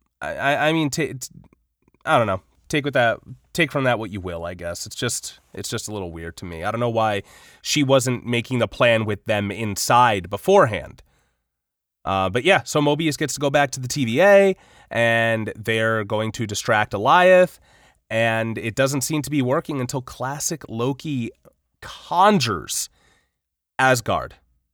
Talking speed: 170 wpm